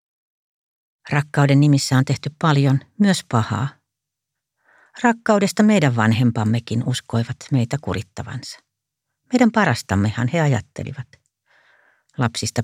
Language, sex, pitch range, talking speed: Finnish, female, 130-170 Hz, 85 wpm